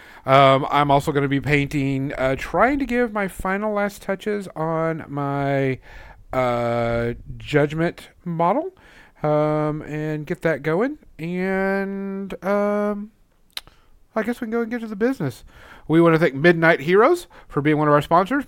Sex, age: male, 40-59